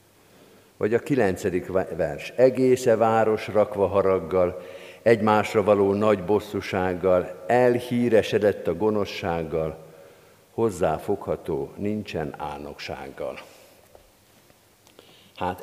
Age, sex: 50-69, male